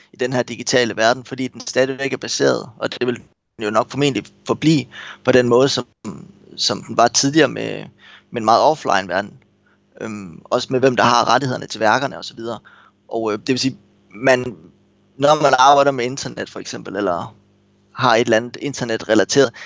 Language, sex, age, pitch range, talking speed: Danish, male, 20-39, 115-140 Hz, 185 wpm